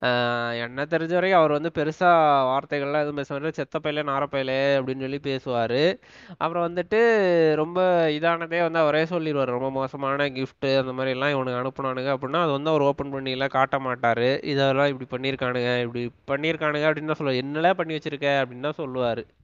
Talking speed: 150 wpm